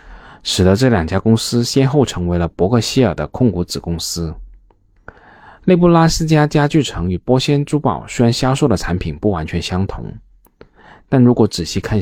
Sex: male